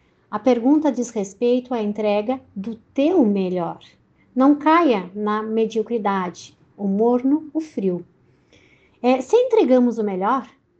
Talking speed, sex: 115 wpm, female